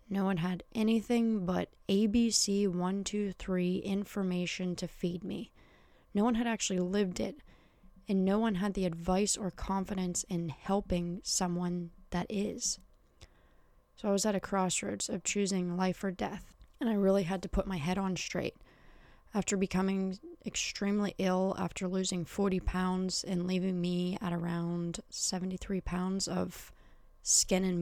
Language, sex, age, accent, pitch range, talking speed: English, female, 20-39, American, 180-205 Hz, 145 wpm